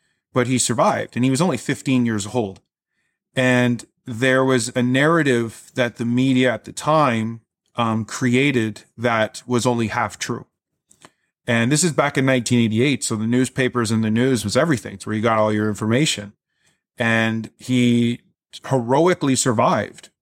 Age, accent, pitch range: 30-49, American, 115-130 Hz